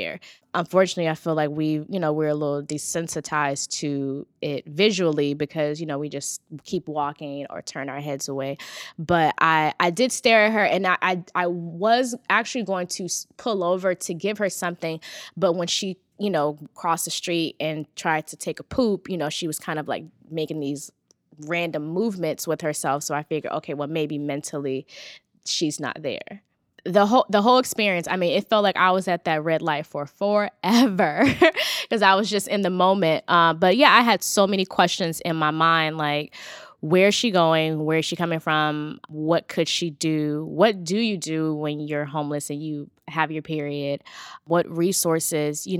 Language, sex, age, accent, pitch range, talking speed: English, female, 10-29, American, 150-185 Hz, 195 wpm